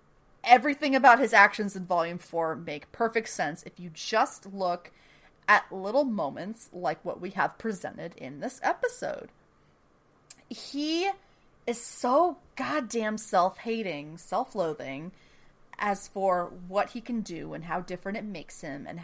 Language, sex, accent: English, female, American